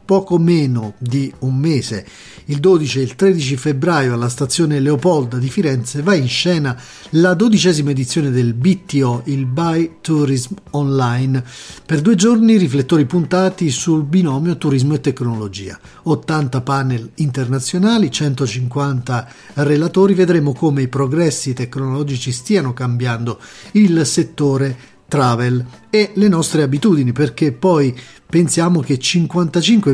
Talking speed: 125 wpm